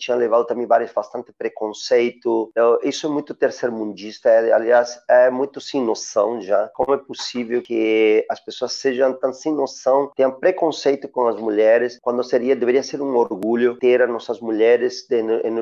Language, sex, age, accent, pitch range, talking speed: Portuguese, male, 40-59, Brazilian, 120-160 Hz, 170 wpm